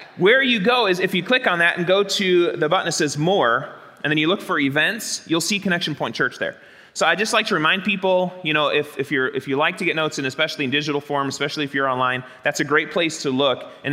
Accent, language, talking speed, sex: American, English, 270 wpm, male